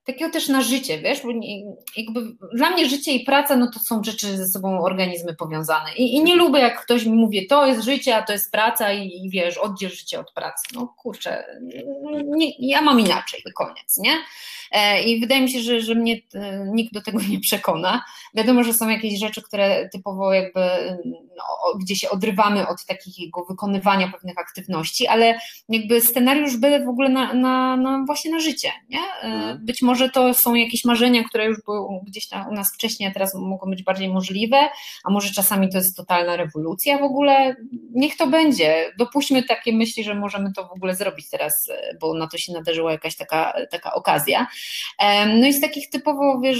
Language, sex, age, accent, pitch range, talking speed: Polish, female, 20-39, native, 195-255 Hz, 190 wpm